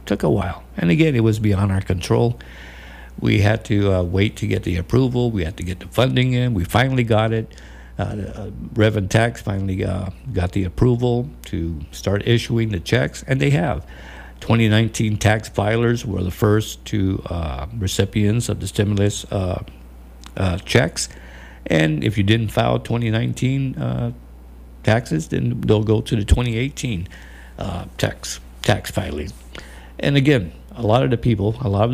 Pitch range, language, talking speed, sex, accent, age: 80-110 Hz, English, 170 wpm, male, American, 60-79